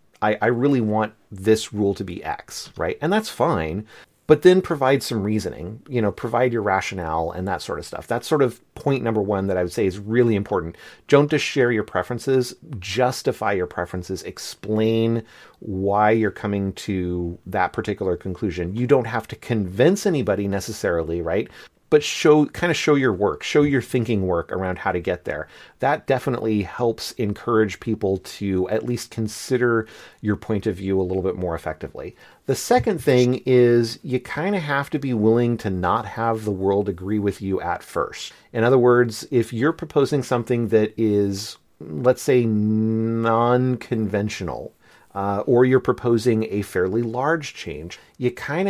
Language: English